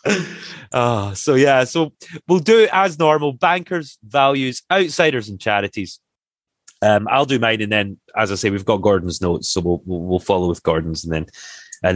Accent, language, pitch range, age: British, English, 90-125 Hz, 30-49